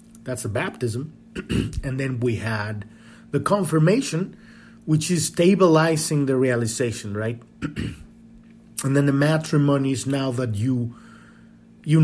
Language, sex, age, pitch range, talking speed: English, male, 30-49, 120-170 Hz, 120 wpm